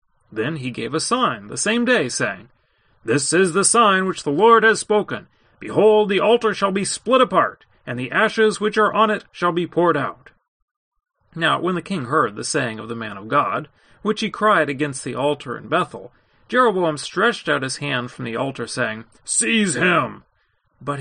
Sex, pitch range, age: male, 140-215 Hz, 40-59